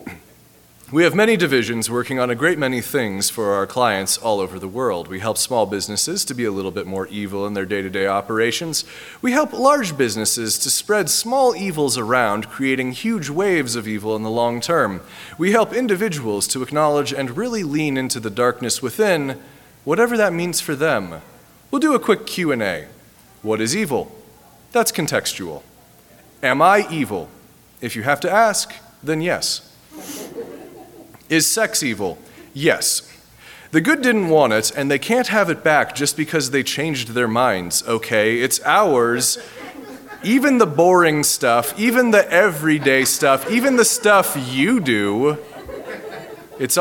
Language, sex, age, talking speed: English, male, 30-49, 160 wpm